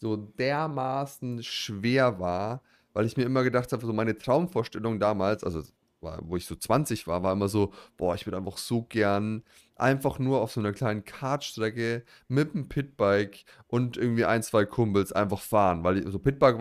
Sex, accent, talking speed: male, German, 175 wpm